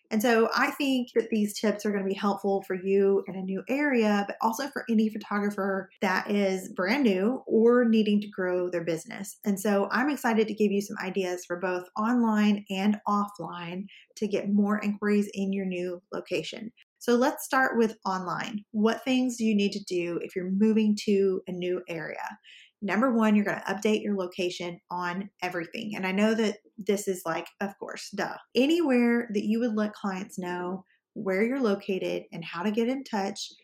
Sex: female